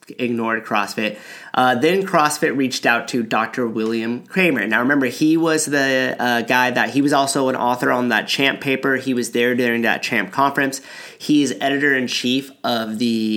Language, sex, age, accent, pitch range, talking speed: English, male, 30-49, American, 115-135 Hz, 175 wpm